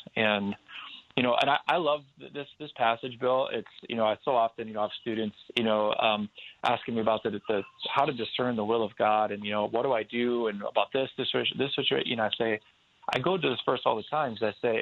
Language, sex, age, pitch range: English, male, 20-39, 110-130 Hz